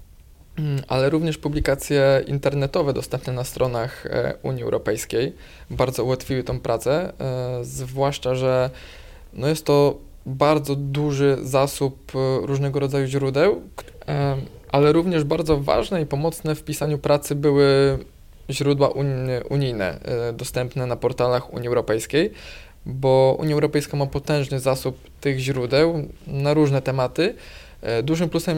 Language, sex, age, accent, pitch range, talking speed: Polish, male, 20-39, native, 125-145 Hz, 115 wpm